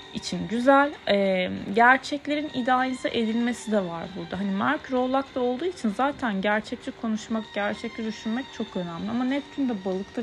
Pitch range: 185-250 Hz